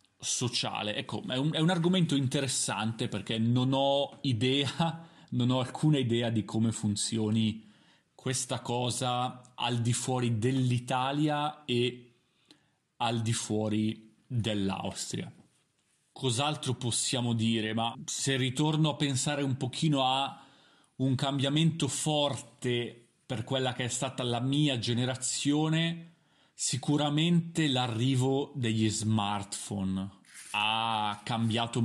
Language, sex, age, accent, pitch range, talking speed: Italian, male, 30-49, native, 115-135 Hz, 110 wpm